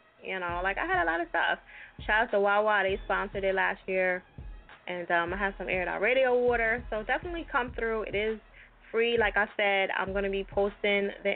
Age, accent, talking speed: 10-29, American, 220 wpm